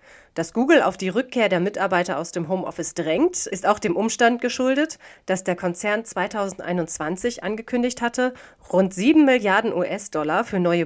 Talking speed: 155 wpm